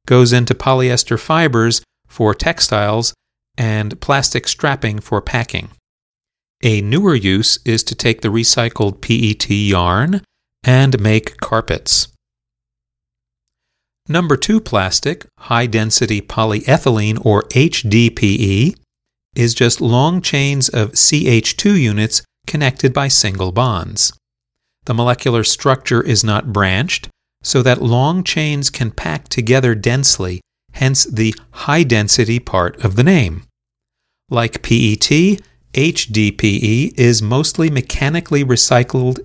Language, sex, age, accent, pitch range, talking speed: English, male, 40-59, American, 105-140 Hz, 105 wpm